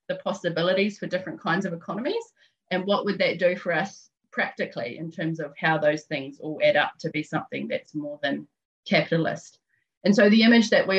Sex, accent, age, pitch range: female, Australian, 30-49, 155-185 Hz